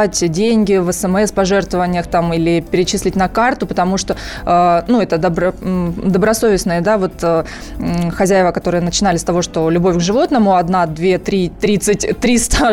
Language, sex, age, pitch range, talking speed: Russian, female, 20-39, 190-235 Hz, 145 wpm